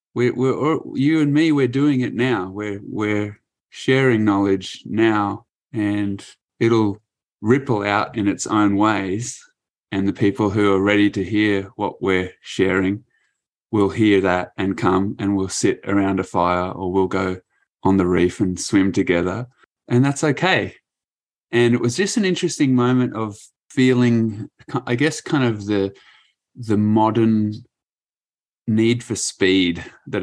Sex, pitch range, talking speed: male, 100-125 Hz, 150 wpm